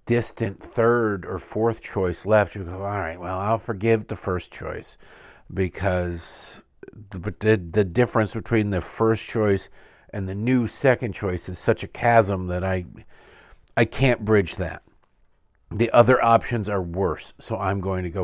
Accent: American